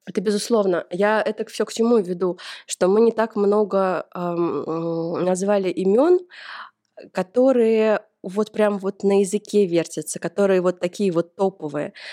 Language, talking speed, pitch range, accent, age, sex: Russian, 140 wpm, 165-205 Hz, native, 20-39, female